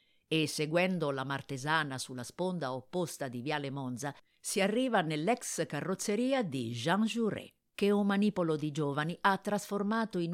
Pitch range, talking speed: 140-195 Hz, 145 wpm